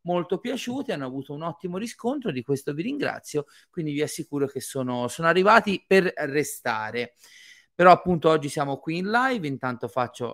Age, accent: 30-49, native